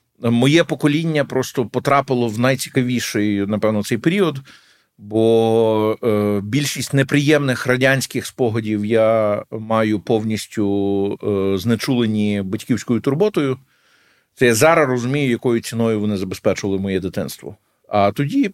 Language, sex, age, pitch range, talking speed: Ukrainian, male, 50-69, 95-115 Hz, 110 wpm